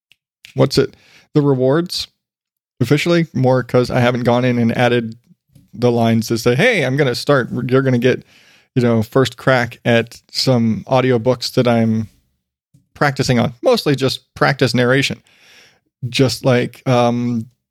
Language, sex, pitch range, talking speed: English, male, 120-150 Hz, 155 wpm